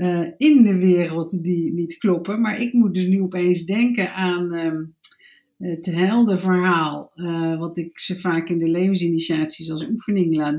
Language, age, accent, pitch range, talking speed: Dutch, 50-69, Dutch, 175-210 Hz, 170 wpm